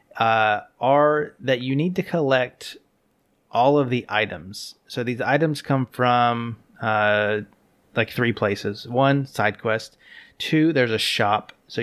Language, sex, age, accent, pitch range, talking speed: English, male, 30-49, American, 110-130 Hz, 140 wpm